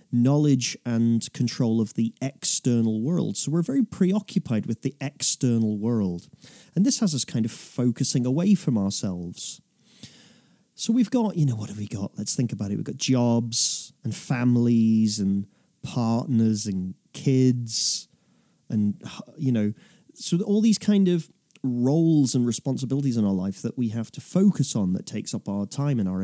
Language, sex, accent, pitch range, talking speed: English, male, British, 115-165 Hz, 170 wpm